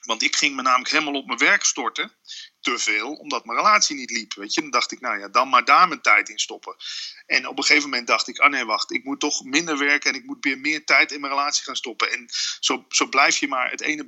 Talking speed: 275 wpm